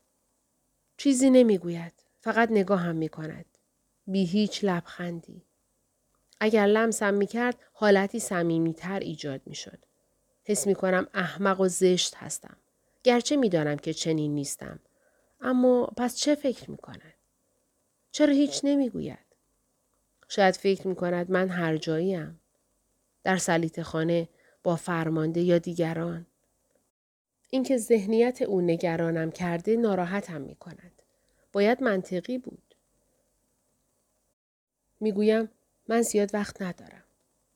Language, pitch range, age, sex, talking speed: Persian, 165-220 Hz, 40-59, female, 110 wpm